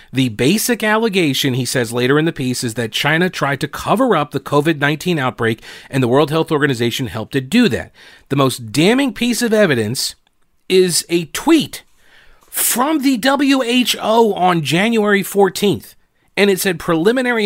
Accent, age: American, 40-59